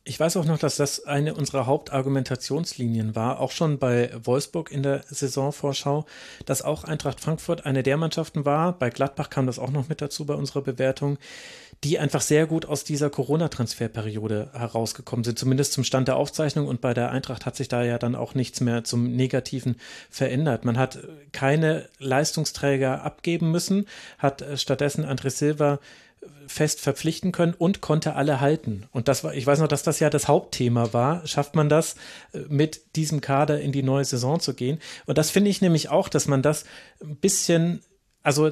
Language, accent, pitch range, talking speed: German, German, 130-160 Hz, 185 wpm